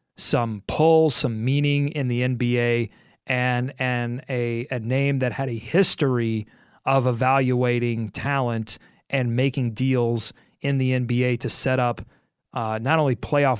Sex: male